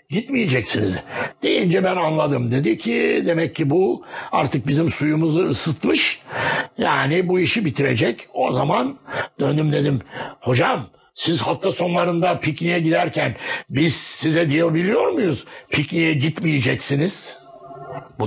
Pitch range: 140-180 Hz